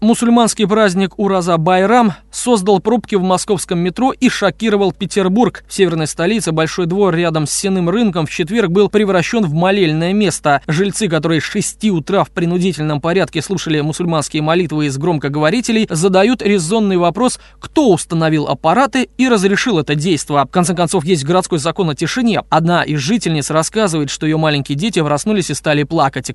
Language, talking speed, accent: Russian, 160 wpm, native